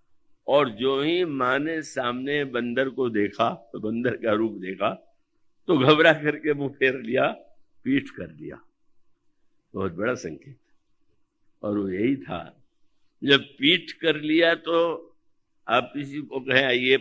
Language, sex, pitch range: Hindi, male, 115-160 Hz